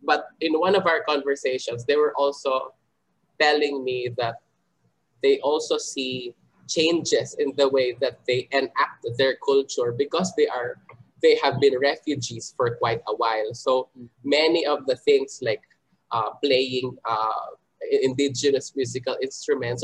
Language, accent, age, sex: Filipino, native, 20-39, male